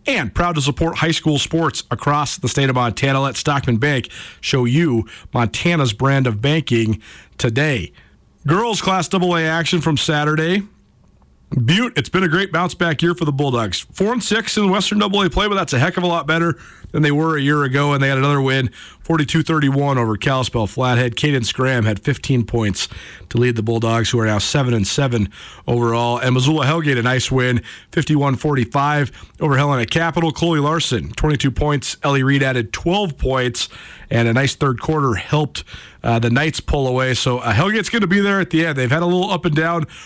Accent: American